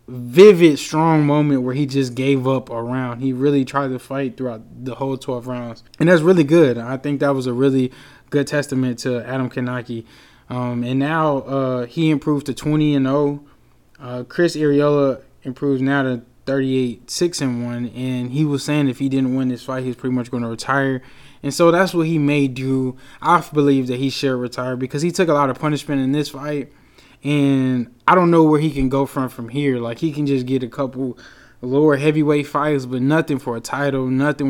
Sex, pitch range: male, 125-145 Hz